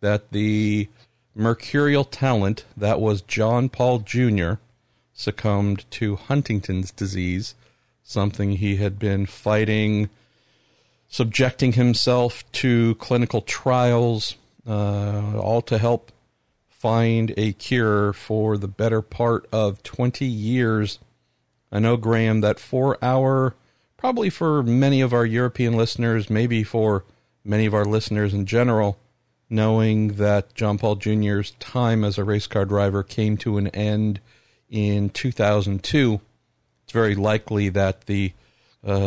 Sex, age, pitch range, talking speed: male, 50-69, 100-115 Hz, 125 wpm